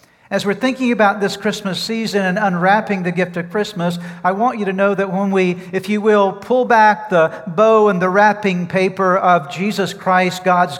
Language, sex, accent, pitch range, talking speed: English, male, American, 130-185 Hz, 200 wpm